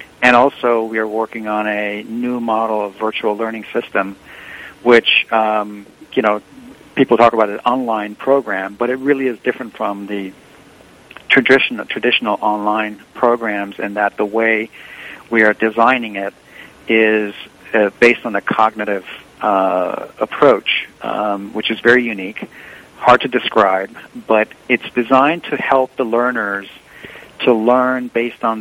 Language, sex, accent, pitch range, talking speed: English, male, American, 105-120 Hz, 145 wpm